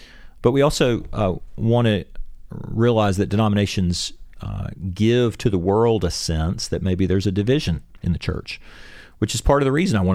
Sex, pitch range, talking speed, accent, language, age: male, 90-110 Hz, 190 wpm, American, English, 40-59